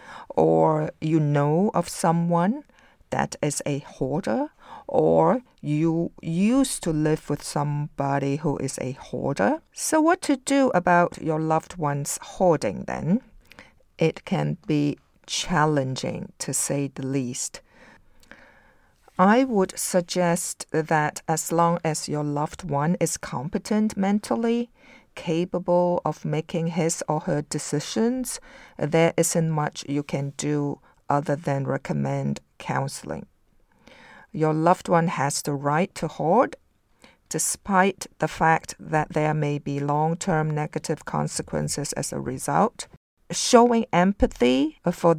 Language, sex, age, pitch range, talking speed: English, female, 50-69, 145-180 Hz, 120 wpm